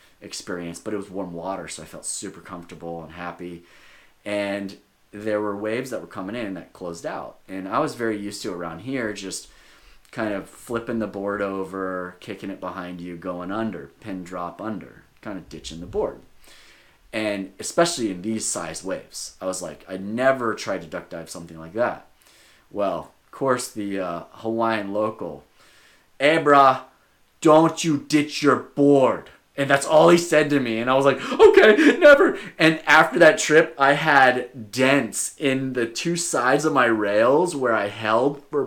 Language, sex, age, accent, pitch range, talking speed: English, male, 30-49, American, 100-135 Hz, 180 wpm